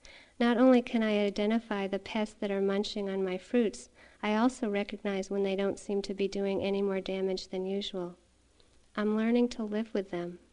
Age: 40-59